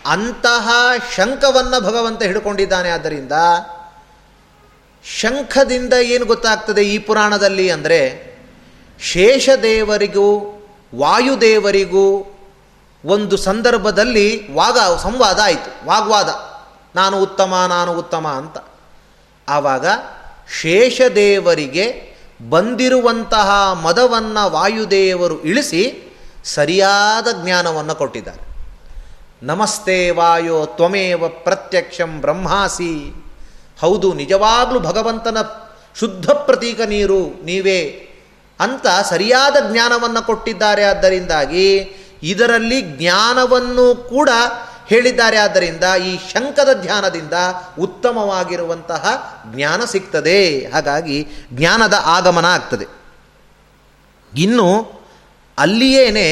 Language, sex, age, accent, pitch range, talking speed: Kannada, male, 30-49, native, 175-235 Hz, 70 wpm